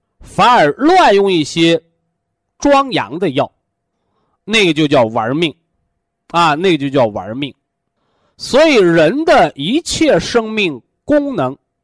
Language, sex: Chinese, male